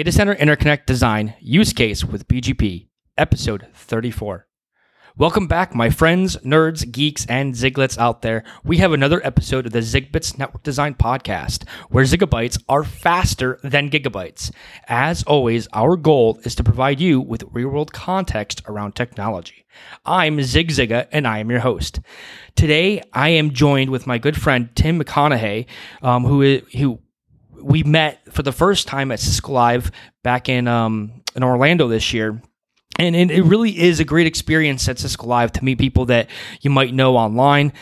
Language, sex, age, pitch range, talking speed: English, male, 30-49, 115-145 Hz, 165 wpm